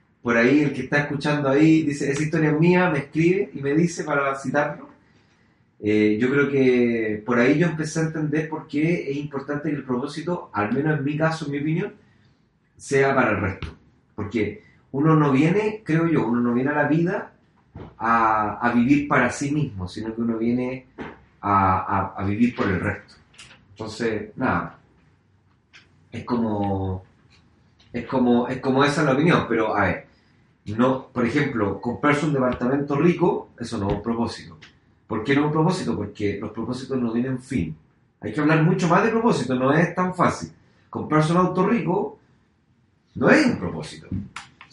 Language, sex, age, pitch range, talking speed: Spanish, male, 30-49, 115-150 Hz, 180 wpm